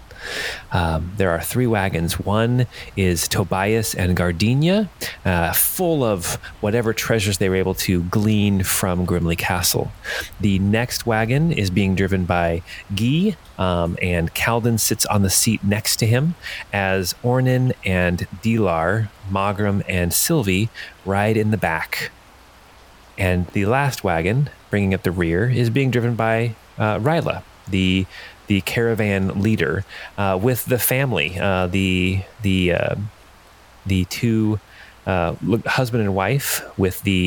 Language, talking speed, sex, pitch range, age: English, 140 wpm, male, 95-115 Hz, 30-49